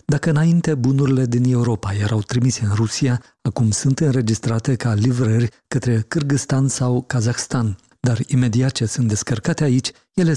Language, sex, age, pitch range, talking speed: Romanian, male, 40-59, 115-140 Hz, 145 wpm